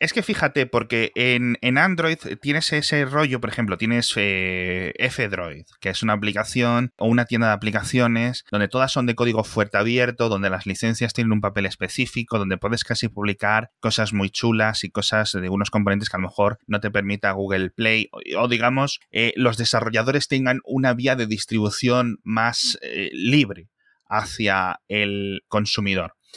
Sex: male